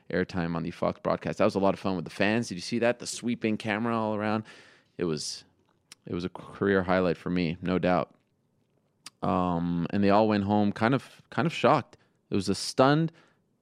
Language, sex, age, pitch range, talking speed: English, male, 20-39, 95-120 Hz, 215 wpm